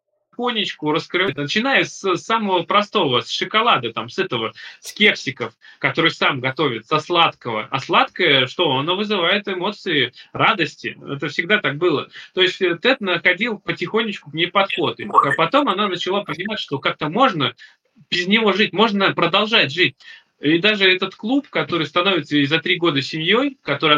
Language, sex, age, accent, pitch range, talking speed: Russian, male, 20-39, native, 140-190 Hz, 155 wpm